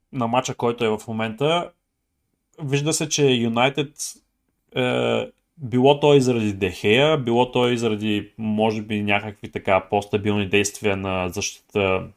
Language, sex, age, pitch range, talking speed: Bulgarian, male, 20-39, 105-130 Hz, 135 wpm